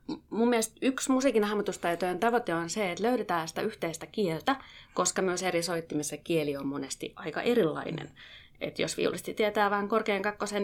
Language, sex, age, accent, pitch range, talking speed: Finnish, female, 30-49, native, 170-230 Hz, 165 wpm